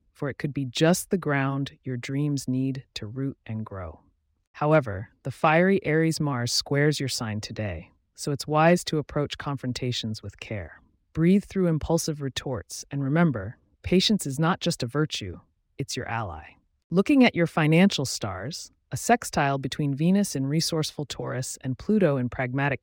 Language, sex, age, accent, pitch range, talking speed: English, female, 30-49, American, 115-160 Hz, 160 wpm